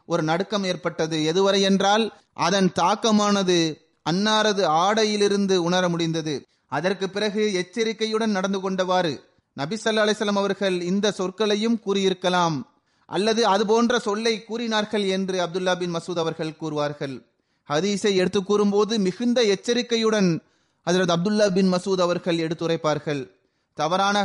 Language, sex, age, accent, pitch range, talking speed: Tamil, male, 30-49, native, 170-210 Hz, 110 wpm